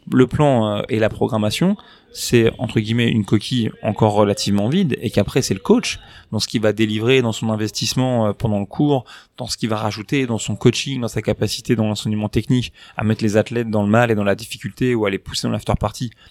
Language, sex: French, male